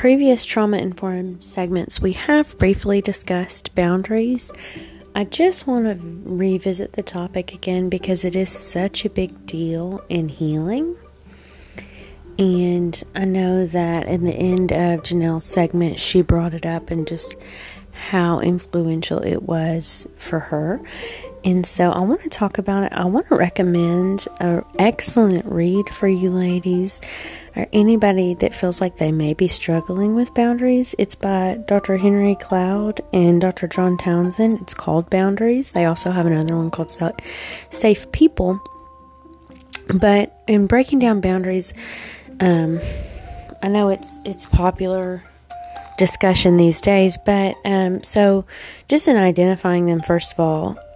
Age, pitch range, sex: 30-49, 175-205 Hz, female